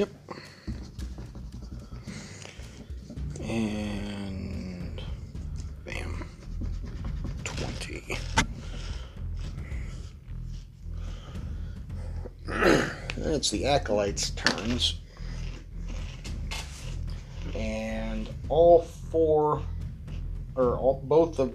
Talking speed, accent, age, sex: 40 wpm, American, 50-69, male